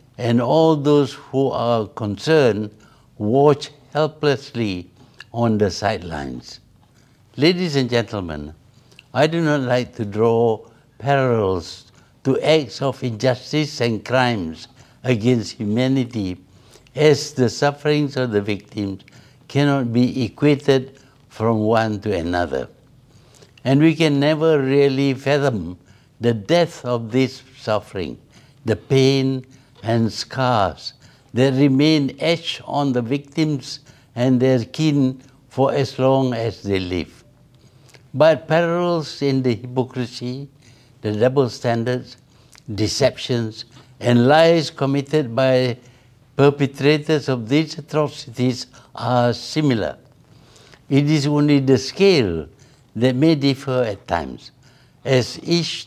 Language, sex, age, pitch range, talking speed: Urdu, male, 60-79, 115-140 Hz, 110 wpm